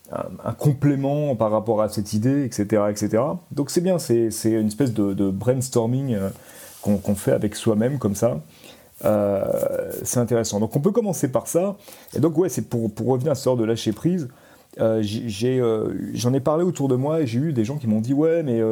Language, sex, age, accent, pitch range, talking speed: French, male, 30-49, French, 105-140 Hz, 220 wpm